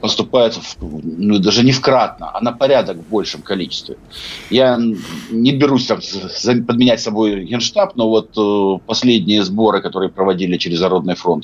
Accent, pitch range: native, 90-115 Hz